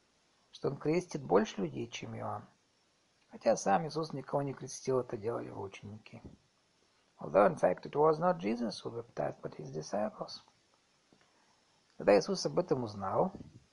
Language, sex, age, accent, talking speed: Russian, male, 50-69, native, 110 wpm